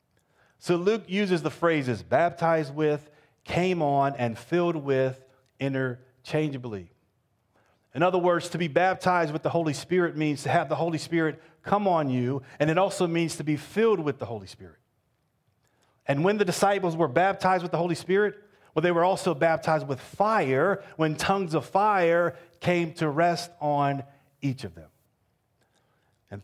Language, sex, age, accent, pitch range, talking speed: English, male, 40-59, American, 130-170 Hz, 165 wpm